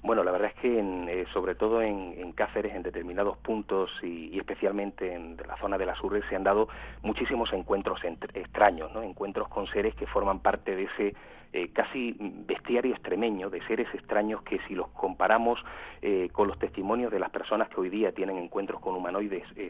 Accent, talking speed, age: Spanish, 195 wpm, 30-49